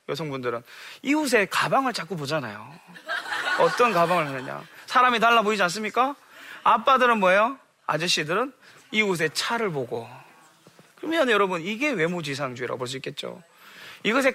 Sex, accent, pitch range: male, native, 140-210 Hz